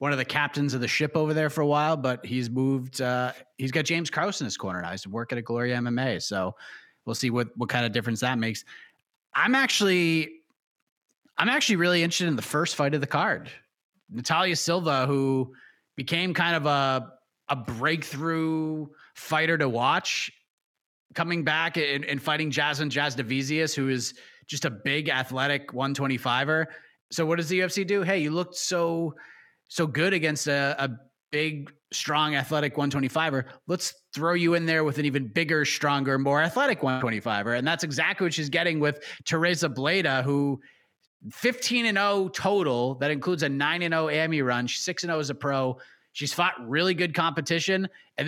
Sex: male